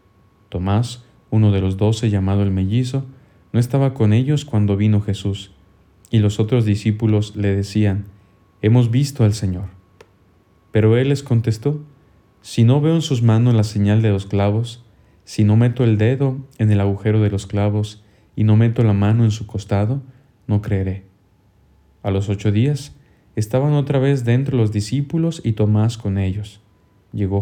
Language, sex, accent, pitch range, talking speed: Spanish, male, Mexican, 100-115 Hz, 165 wpm